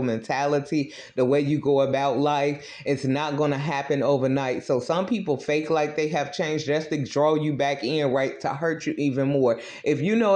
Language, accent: English, American